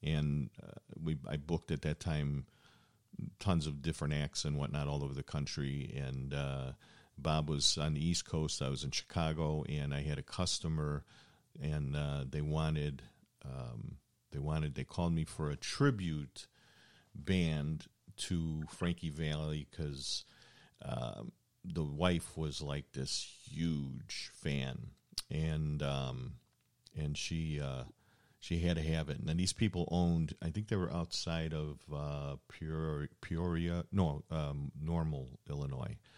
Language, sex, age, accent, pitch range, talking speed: English, male, 50-69, American, 75-85 Hz, 150 wpm